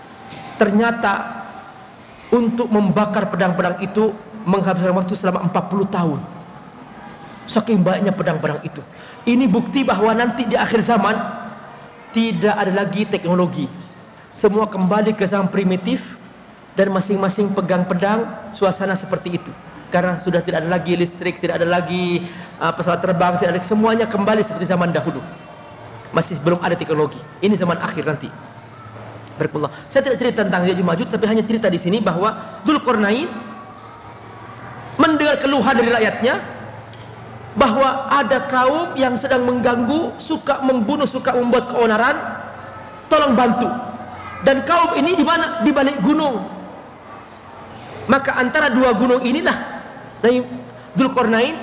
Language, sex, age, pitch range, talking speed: Indonesian, male, 40-59, 180-250 Hz, 125 wpm